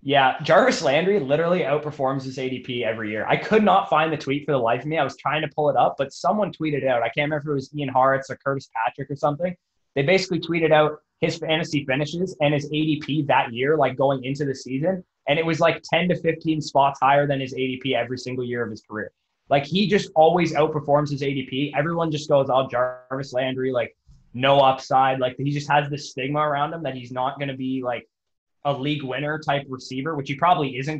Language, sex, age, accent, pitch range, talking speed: English, male, 20-39, American, 130-155 Hz, 230 wpm